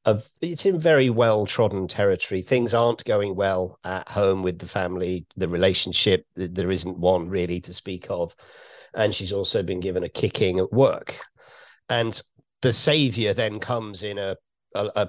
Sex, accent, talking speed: male, British, 170 wpm